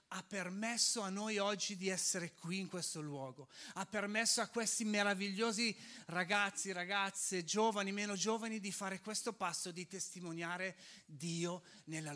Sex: male